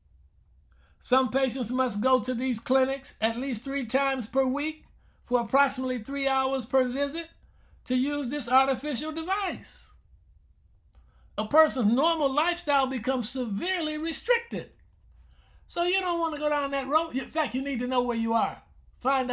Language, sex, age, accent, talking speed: English, male, 60-79, American, 155 wpm